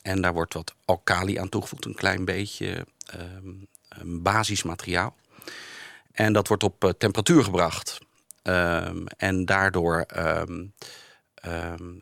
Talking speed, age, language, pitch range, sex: 125 wpm, 40-59, Dutch, 90-105 Hz, male